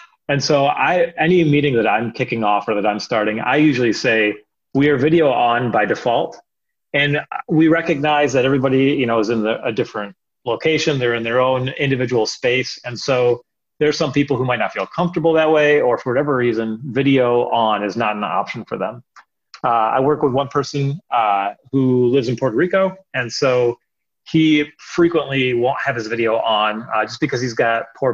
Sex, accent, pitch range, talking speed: male, American, 110-145 Hz, 190 wpm